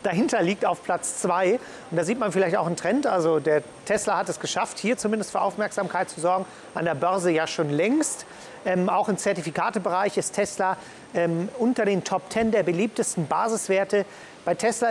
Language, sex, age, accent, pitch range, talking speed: German, male, 40-59, German, 185-225 Hz, 190 wpm